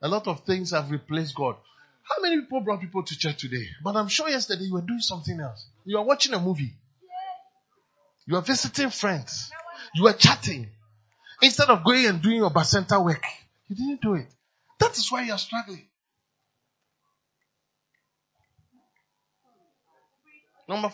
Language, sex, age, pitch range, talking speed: English, male, 30-49, 175-275 Hz, 160 wpm